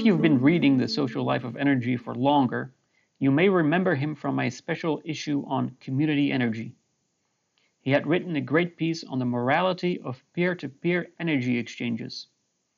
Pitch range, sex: 135-165 Hz, male